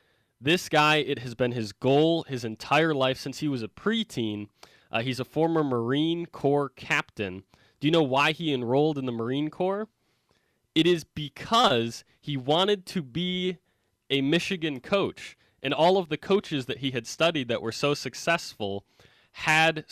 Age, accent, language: 20-39, American, English